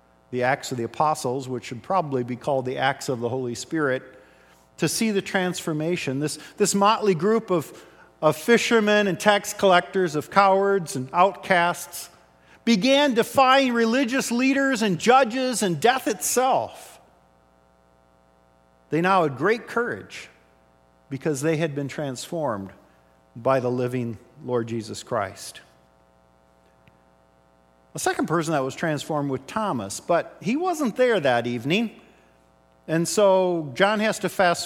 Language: English